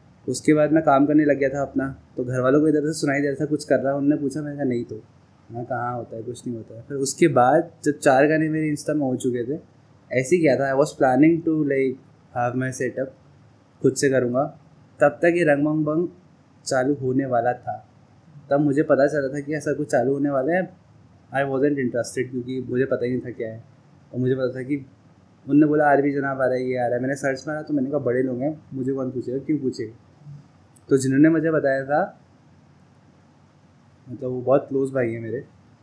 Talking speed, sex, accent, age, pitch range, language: 235 wpm, male, native, 20-39, 125-150 Hz, Hindi